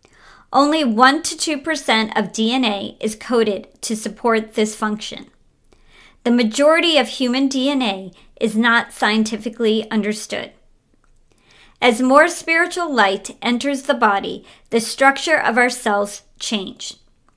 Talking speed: 115 wpm